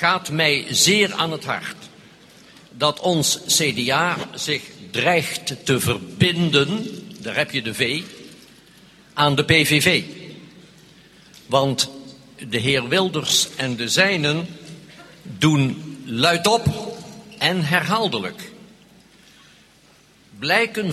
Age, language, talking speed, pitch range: 60-79, Dutch, 95 wpm, 150-205 Hz